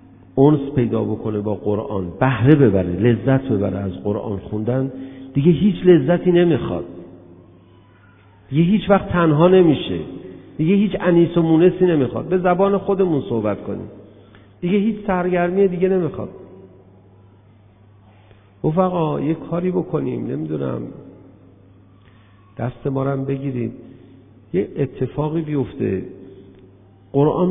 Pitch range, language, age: 100-165 Hz, Persian, 50-69